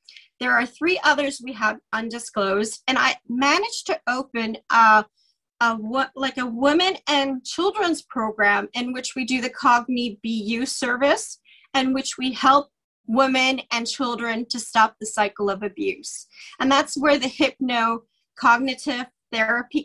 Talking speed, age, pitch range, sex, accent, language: 150 wpm, 30-49, 230-300 Hz, female, American, English